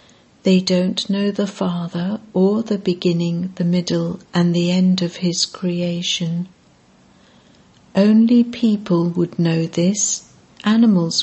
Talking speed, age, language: 120 wpm, 60-79, English